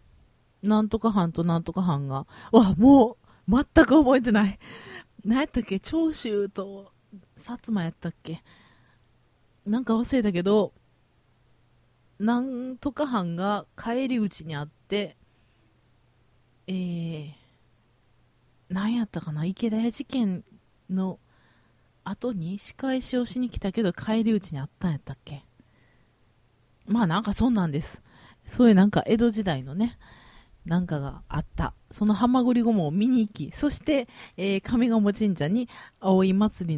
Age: 30-49